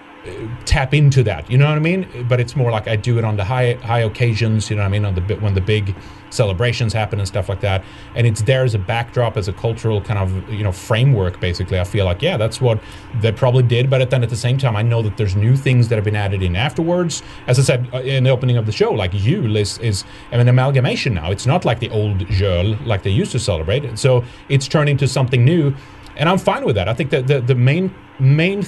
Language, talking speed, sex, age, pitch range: English, 260 wpm, male, 30-49, 105-135 Hz